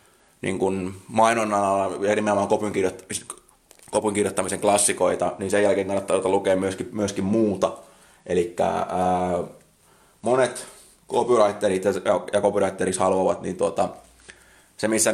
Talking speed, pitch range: 105 wpm, 95-105 Hz